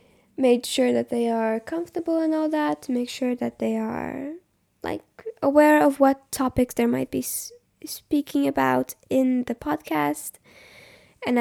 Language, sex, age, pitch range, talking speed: English, female, 10-29, 235-335 Hz, 155 wpm